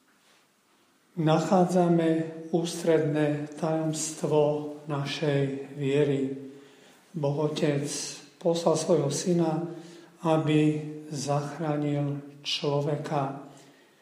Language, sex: Slovak, male